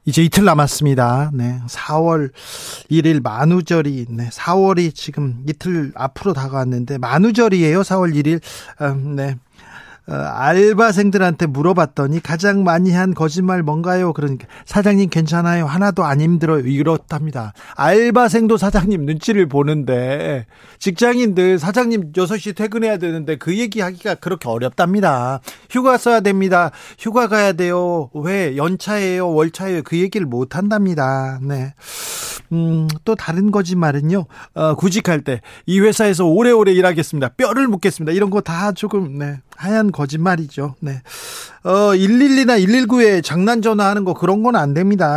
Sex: male